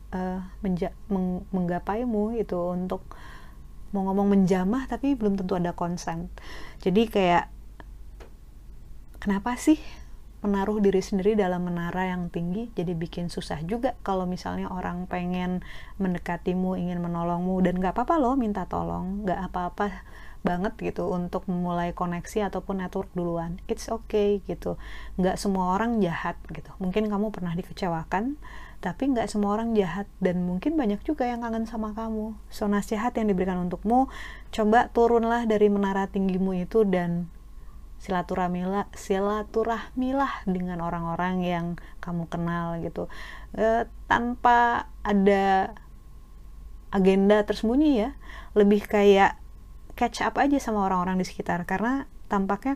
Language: Indonesian